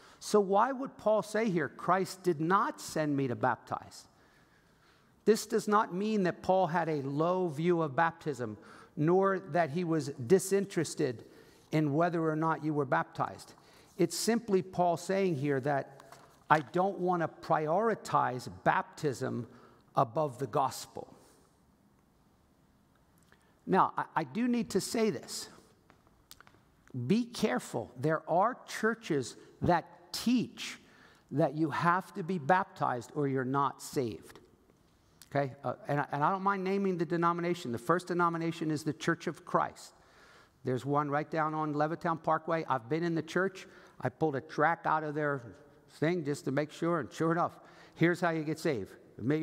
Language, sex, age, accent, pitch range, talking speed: English, male, 50-69, American, 145-180 Hz, 155 wpm